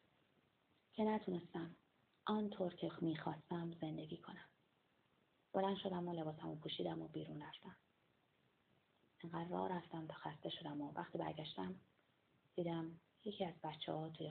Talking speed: 135 wpm